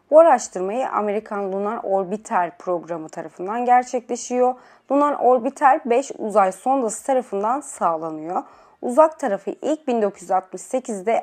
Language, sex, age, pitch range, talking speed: Turkish, female, 30-49, 195-260 Hz, 100 wpm